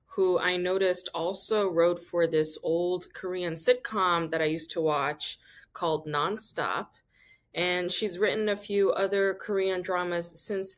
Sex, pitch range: female, 165-215 Hz